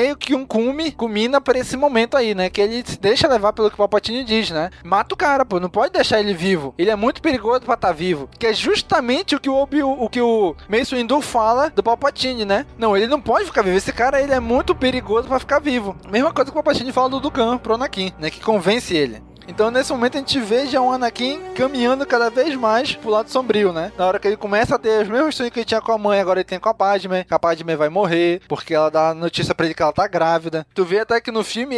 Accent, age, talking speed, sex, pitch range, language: Brazilian, 20-39, 270 wpm, male, 190-265 Hz, Portuguese